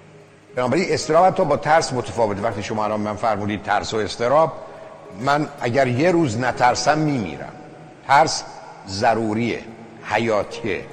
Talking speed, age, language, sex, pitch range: 125 wpm, 60-79, Persian, male, 110-155 Hz